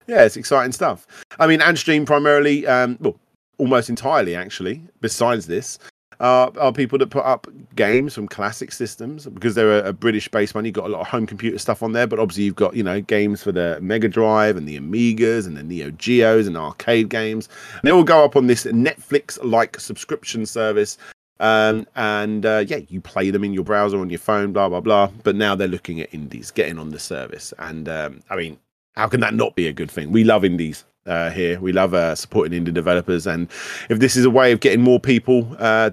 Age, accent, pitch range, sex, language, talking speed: 40-59, British, 100-125 Hz, male, English, 220 wpm